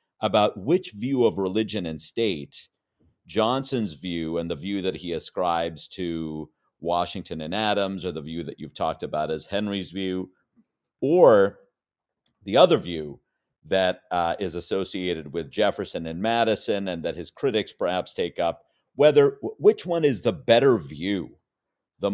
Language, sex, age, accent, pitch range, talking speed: English, male, 40-59, American, 90-125 Hz, 150 wpm